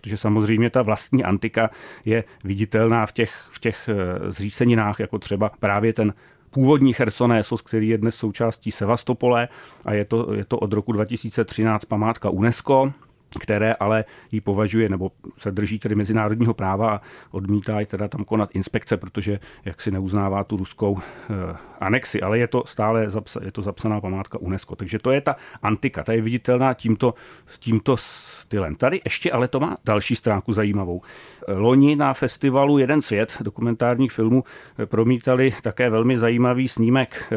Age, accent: 40-59, native